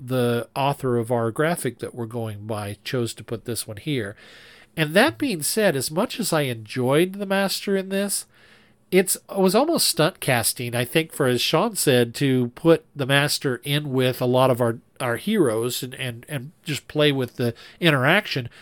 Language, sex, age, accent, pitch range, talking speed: English, male, 40-59, American, 120-165 Hz, 195 wpm